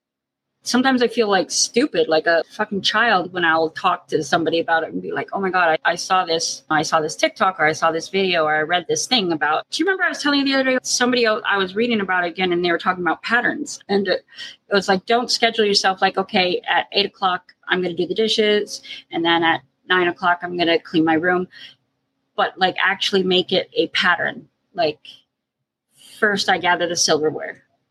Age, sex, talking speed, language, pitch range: 30-49, female, 230 wpm, English, 170-230 Hz